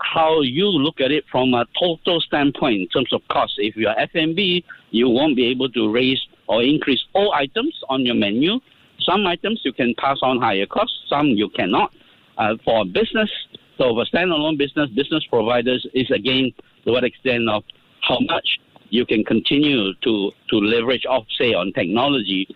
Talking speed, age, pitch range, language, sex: 190 wpm, 60-79, 120-170 Hz, English, male